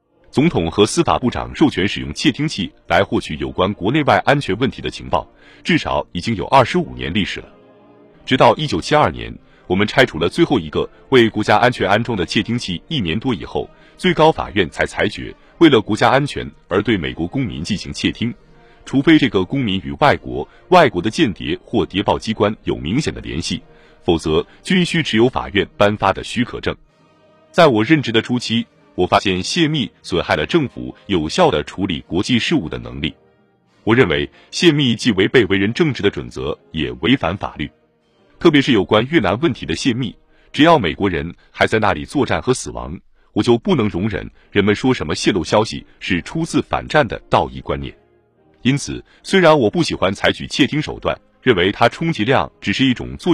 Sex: male